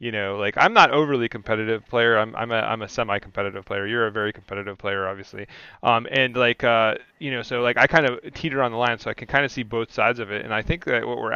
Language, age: English, 30-49